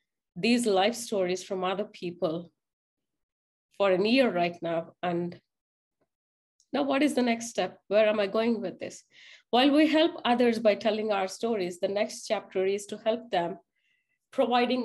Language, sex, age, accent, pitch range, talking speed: English, female, 30-49, Indian, 185-230 Hz, 160 wpm